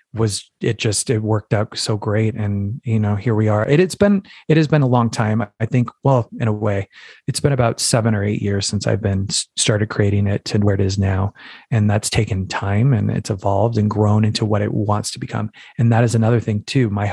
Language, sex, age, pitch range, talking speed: English, male, 30-49, 105-125 Hz, 240 wpm